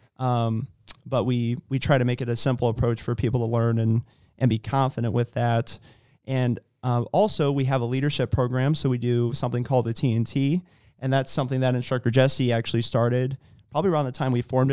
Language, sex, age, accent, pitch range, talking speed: English, male, 30-49, American, 120-135 Hz, 205 wpm